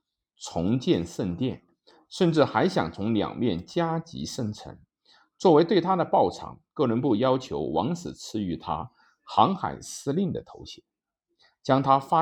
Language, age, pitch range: Chinese, 50-69, 110-170 Hz